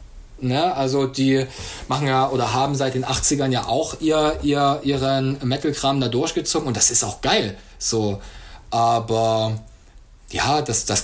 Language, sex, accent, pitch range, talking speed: German, male, German, 120-150 Hz, 150 wpm